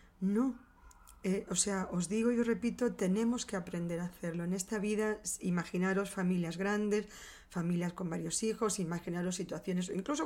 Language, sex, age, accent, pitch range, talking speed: Spanish, female, 20-39, Spanish, 175-210 Hz, 160 wpm